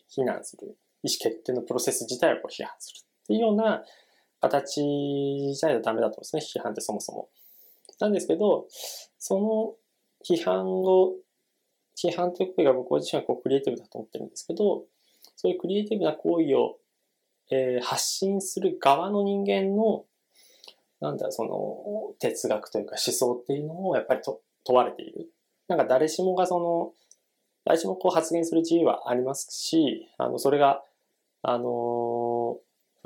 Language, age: Japanese, 20-39